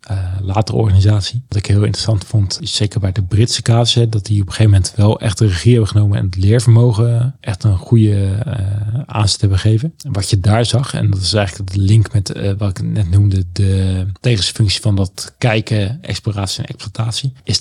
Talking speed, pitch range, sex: 210 wpm, 100-120 Hz, male